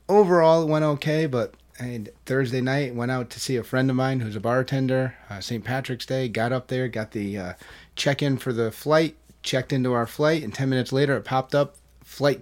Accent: American